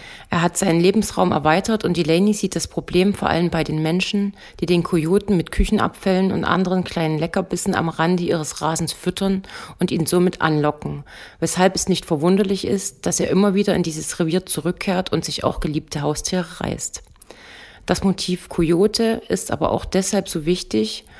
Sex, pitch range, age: female, 165-195 Hz, 30-49